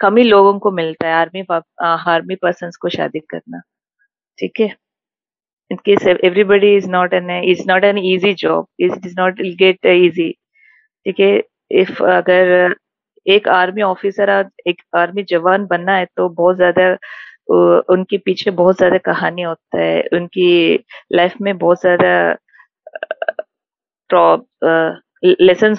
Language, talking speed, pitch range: Hindi, 135 wpm, 175-200 Hz